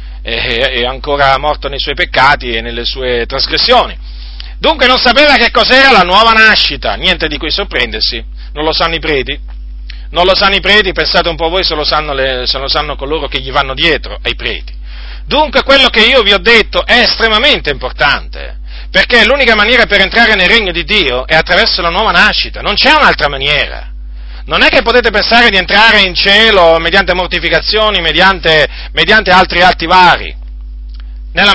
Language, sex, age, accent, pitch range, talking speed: Italian, male, 40-59, native, 130-215 Hz, 175 wpm